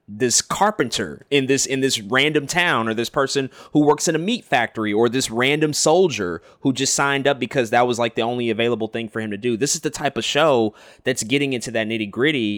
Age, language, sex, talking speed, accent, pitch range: 20-39, English, male, 235 wpm, American, 110-130 Hz